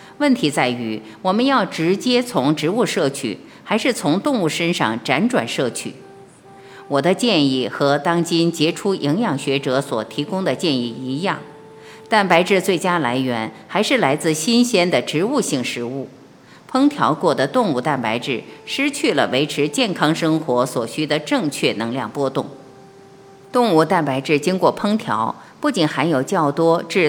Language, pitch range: Chinese, 140-200 Hz